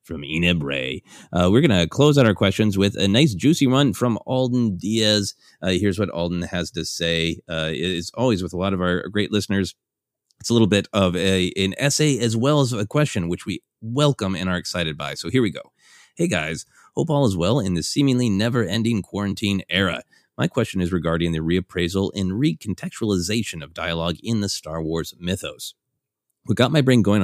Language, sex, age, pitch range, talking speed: English, male, 30-49, 85-115 Hz, 205 wpm